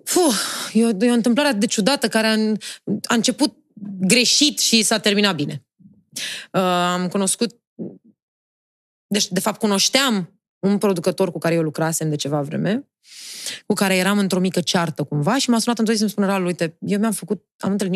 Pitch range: 180-235 Hz